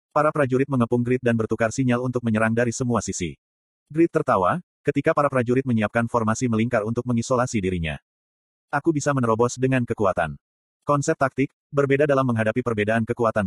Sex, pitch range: male, 105-135 Hz